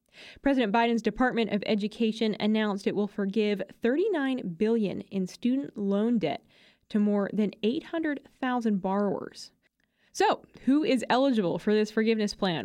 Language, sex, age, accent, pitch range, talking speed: English, female, 20-39, American, 195-245 Hz, 135 wpm